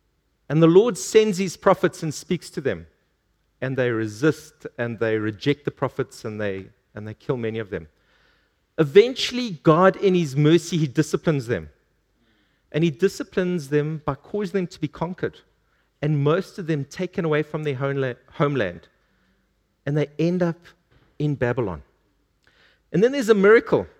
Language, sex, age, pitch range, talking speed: English, male, 50-69, 135-190 Hz, 160 wpm